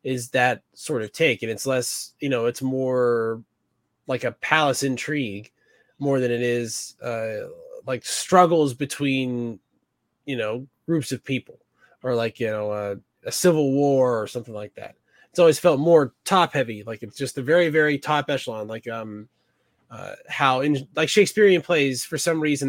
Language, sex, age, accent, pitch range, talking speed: English, male, 20-39, American, 120-150 Hz, 175 wpm